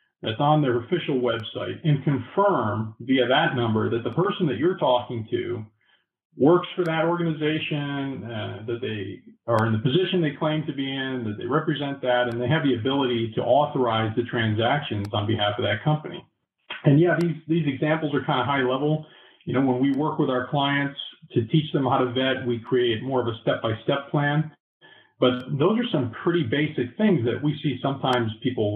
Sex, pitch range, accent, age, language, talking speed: male, 115-150 Hz, American, 40-59, English, 195 wpm